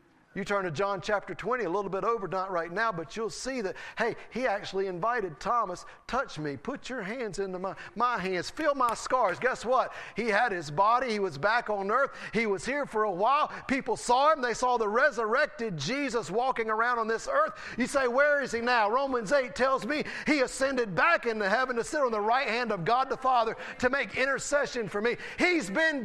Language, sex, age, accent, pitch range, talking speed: English, male, 40-59, American, 170-245 Hz, 220 wpm